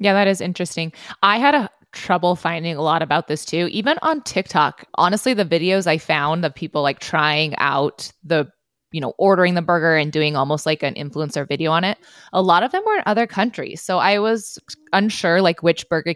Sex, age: female, 20-39